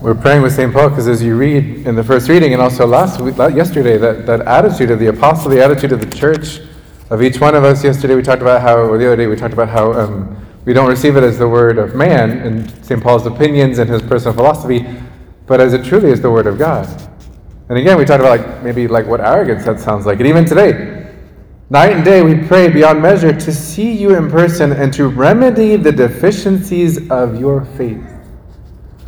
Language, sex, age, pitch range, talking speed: English, male, 20-39, 115-150 Hz, 230 wpm